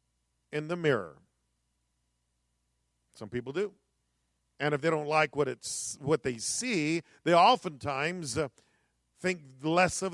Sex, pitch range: male, 150-215 Hz